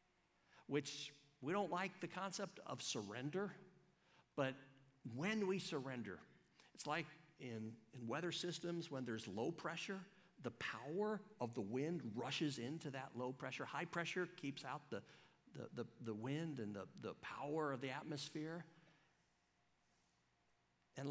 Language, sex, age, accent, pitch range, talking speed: English, male, 50-69, American, 120-170 Hz, 140 wpm